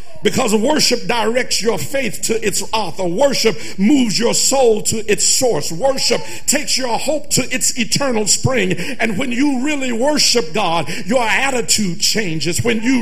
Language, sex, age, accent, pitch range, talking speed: English, male, 50-69, American, 145-240 Hz, 155 wpm